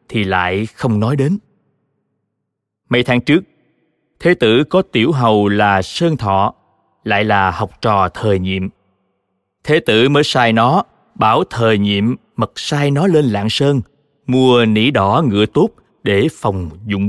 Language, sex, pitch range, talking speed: Vietnamese, male, 105-155 Hz, 155 wpm